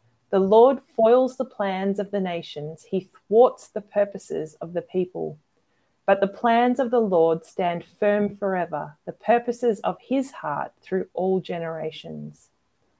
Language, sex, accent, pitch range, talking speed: English, female, Australian, 165-215 Hz, 150 wpm